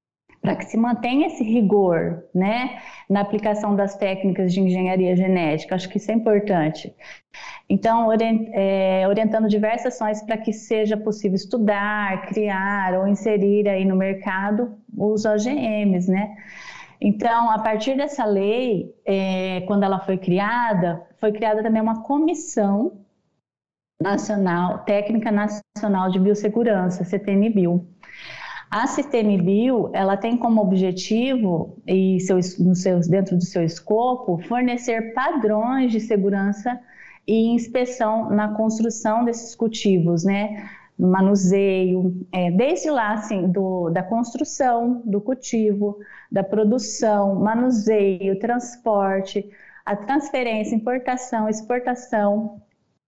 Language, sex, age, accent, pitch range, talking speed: Portuguese, female, 20-39, Brazilian, 195-230 Hz, 115 wpm